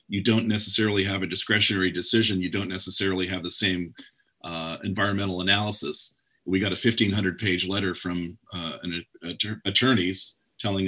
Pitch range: 95-110 Hz